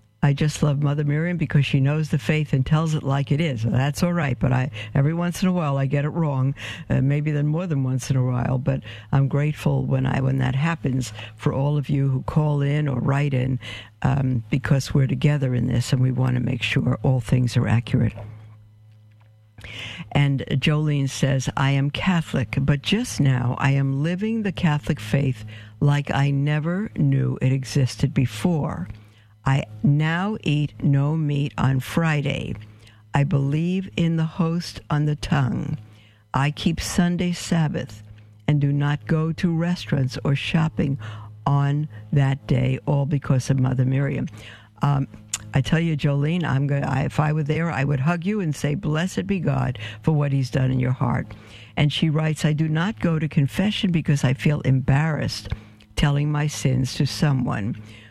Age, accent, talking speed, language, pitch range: 60-79, American, 180 wpm, English, 130-155 Hz